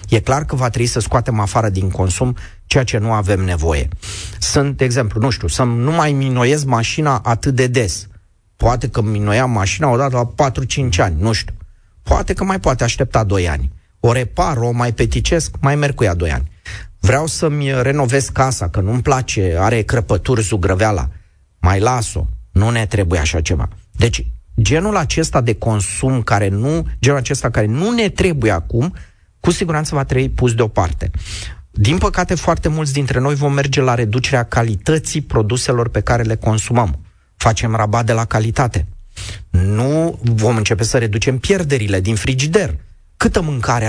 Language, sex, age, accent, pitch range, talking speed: Romanian, male, 30-49, native, 100-135 Hz, 170 wpm